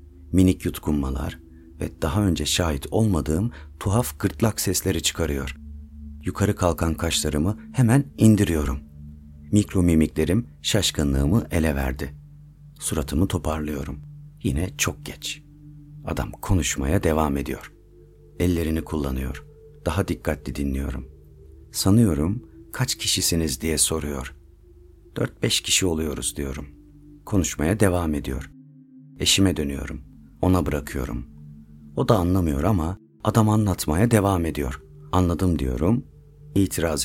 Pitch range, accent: 75-105 Hz, native